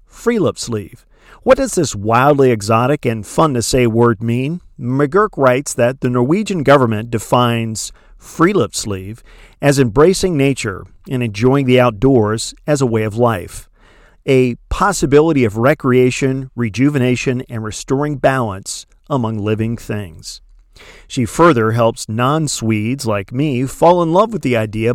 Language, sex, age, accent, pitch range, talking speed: English, male, 40-59, American, 115-150 Hz, 135 wpm